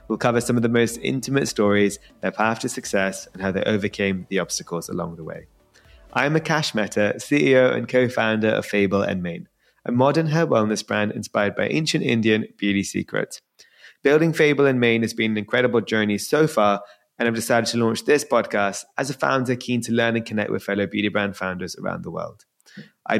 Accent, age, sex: British, 20-39, male